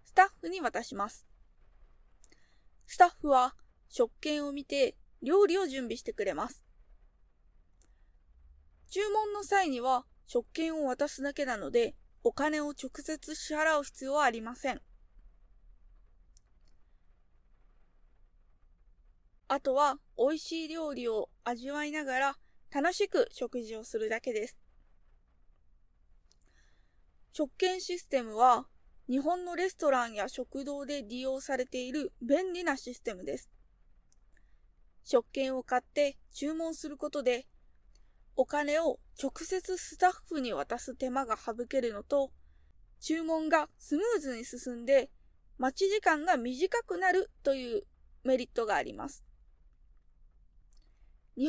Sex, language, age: female, Japanese, 20-39